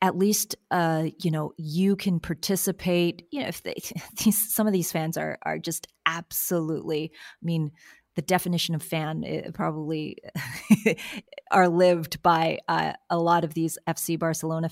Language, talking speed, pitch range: English, 150 wpm, 160-190 Hz